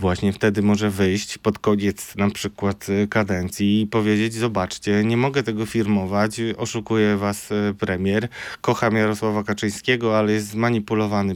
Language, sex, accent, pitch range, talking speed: Polish, male, native, 110-160 Hz, 130 wpm